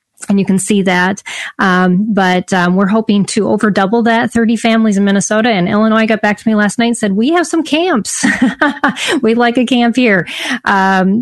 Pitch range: 180-230 Hz